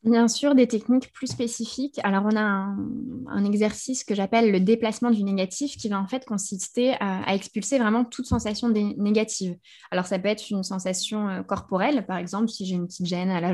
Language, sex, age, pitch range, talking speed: French, female, 20-39, 195-240 Hz, 205 wpm